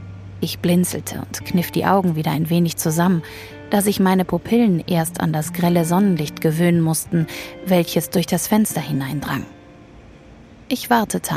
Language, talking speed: German, 150 wpm